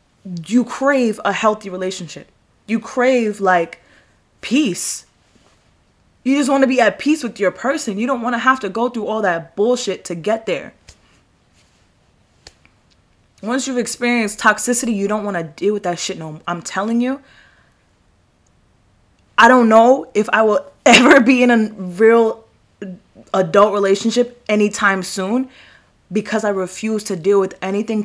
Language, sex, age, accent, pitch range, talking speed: English, female, 20-39, American, 180-225 Hz, 155 wpm